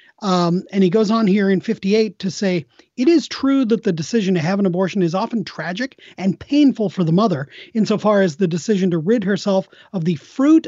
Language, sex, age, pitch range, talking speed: English, male, 40-59, 170-215 Hz, 215 wpm